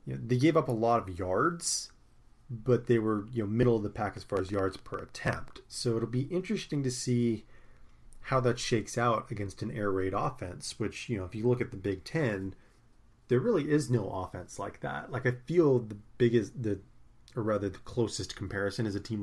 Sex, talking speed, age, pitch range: male, 205 wpm, 30-49, 100-125 Hz